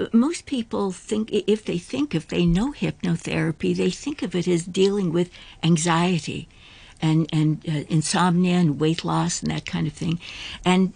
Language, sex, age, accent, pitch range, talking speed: English, female, 60-79, American, 160-195 Hz, 170 wpm